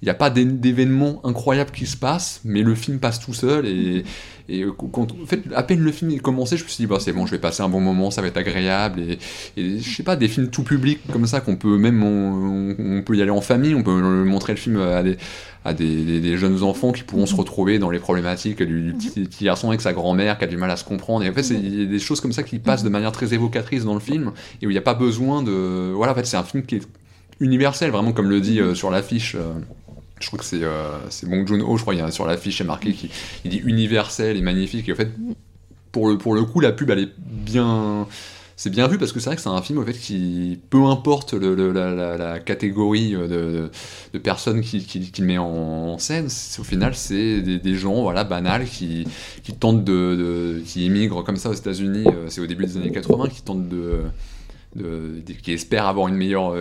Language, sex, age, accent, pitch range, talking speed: French, male, 20-39, French, 90-115 Hz, 265 wpm